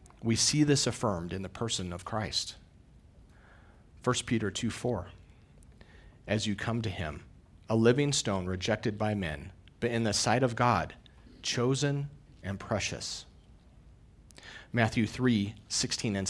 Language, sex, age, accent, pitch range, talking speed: English, male, 40-59, American, 95-120 Hz, 130 wpm